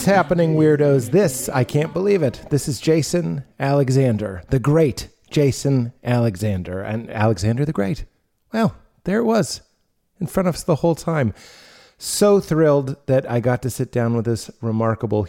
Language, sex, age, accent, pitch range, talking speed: English, male, 30-49, American, 110-140 Hz, 165 wpm